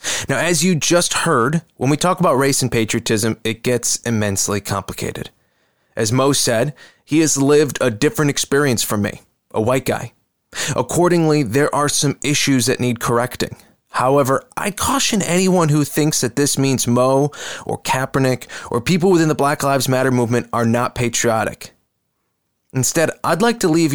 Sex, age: male, 20-39